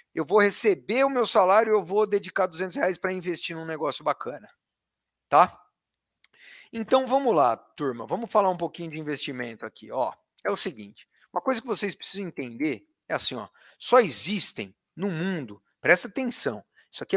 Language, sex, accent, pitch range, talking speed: Portuguese, male, Brazilian, 165-225 Hz, 175 wpm